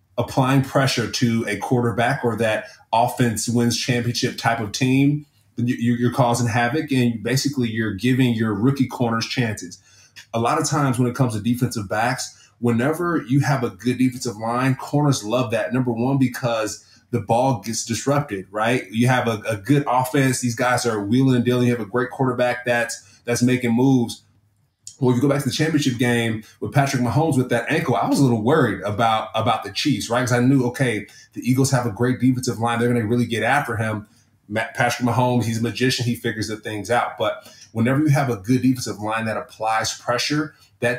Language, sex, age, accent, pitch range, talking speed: English, male, 20-39, American, 115-130 Hz, 200 wpm